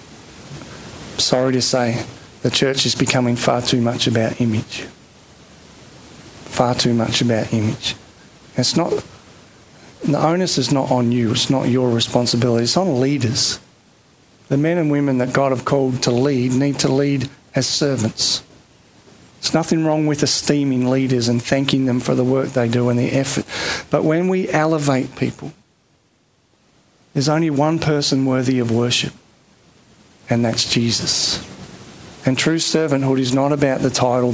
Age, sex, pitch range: 40-59, male, 125-150 Hz